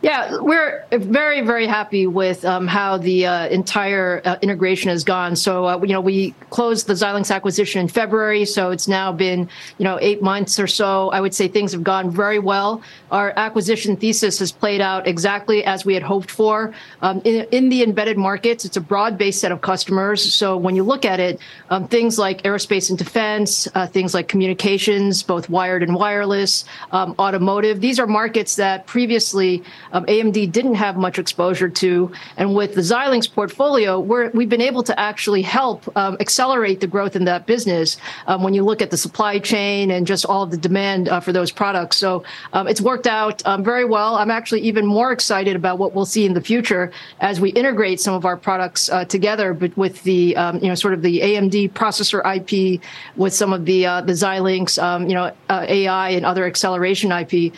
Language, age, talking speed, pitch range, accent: English, 40-59, 200 wpm, 185-215 Hz, American